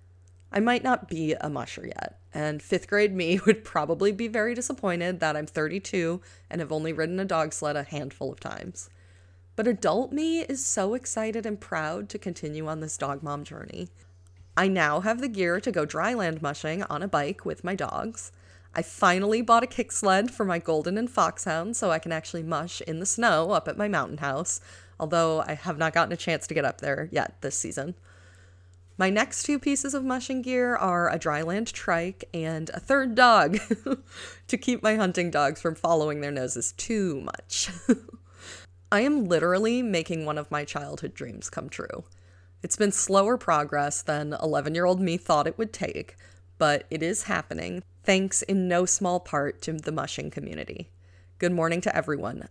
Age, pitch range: 30-49, 145-205 Hz